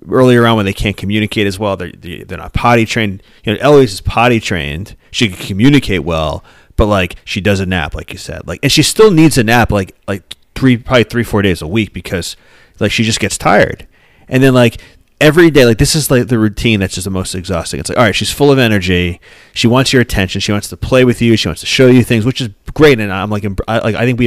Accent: American